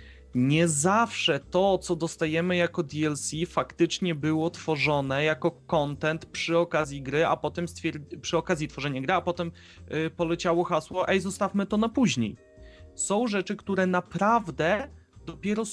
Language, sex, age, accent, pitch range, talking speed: Polish, male, 30-49, native, 155-195 Hz, 140 wpm